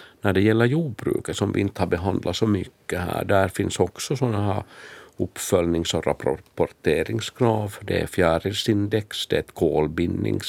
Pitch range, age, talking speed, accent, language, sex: 90-110 Hz, 50-69, 145 wpm, Finnish, Swedish, male